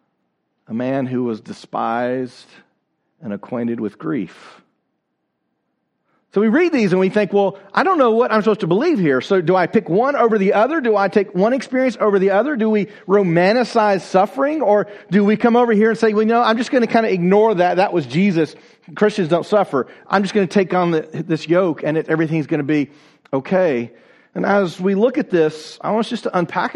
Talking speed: 215 wpm